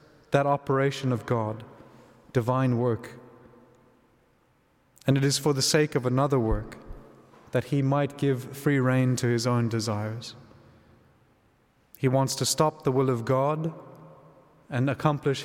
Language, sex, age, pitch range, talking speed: English, male, 30-49, 120-140 Hz, 135 wpm